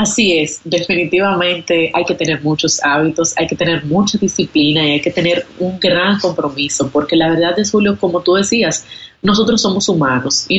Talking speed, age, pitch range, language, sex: 180 wpm, 30-49, 160-185 Hz, Spanish, female